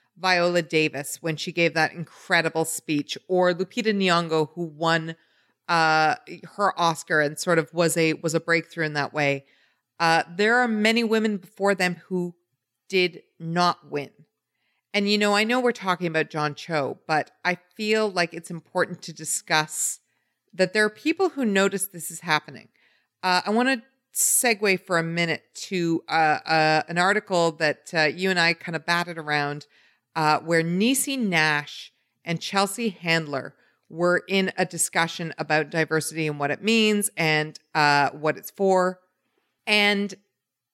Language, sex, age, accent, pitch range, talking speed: English, female, 40-59, American, 160-195 Hz, 160 wpm